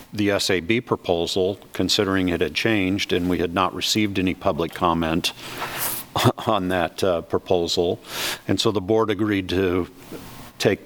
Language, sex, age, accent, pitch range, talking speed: English, male, 50-69, American, 90-110 Hz, 145 wpm